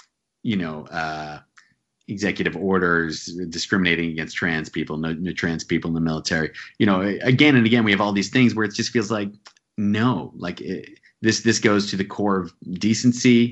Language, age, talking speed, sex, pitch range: English, 30-49, 180 wpm, male, 85-105 Hz